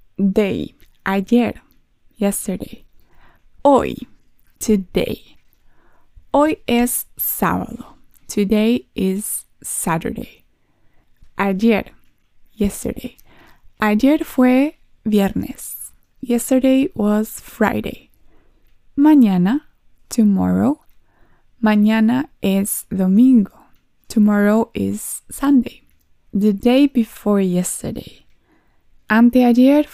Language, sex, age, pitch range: Spanish, female, 20-39, 205-265 Hz